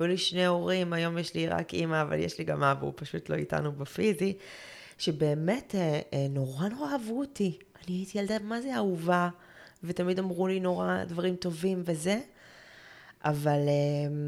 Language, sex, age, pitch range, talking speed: Hebrew, female, 20-39, 140-190 Hz, 165 wpm